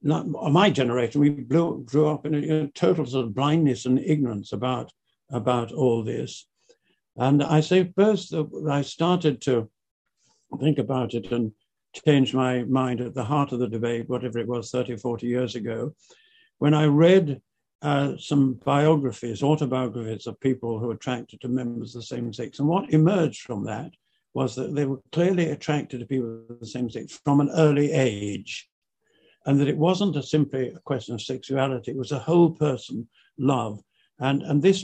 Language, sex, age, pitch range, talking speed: English, male, 60-79, 125-150 Hz, 180 wpm